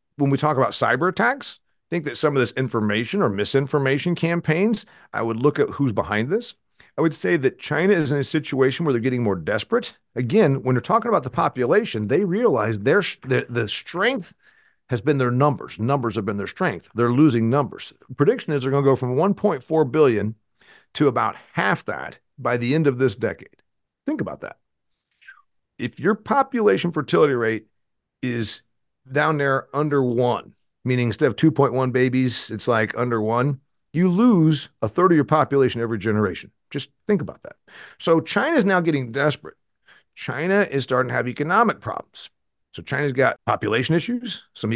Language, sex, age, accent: English, male, 50-69, American